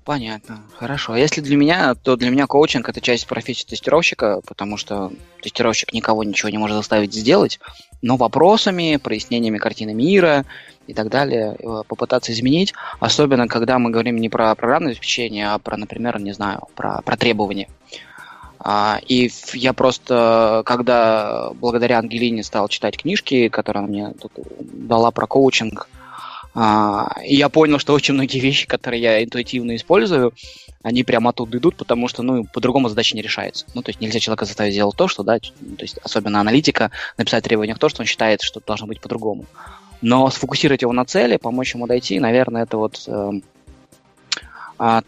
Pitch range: 110-125 Hz